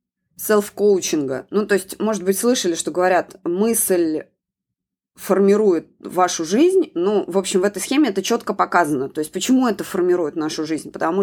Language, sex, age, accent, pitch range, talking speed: Russian, female, 20-39, native, 185-235 Hz, 160 wpm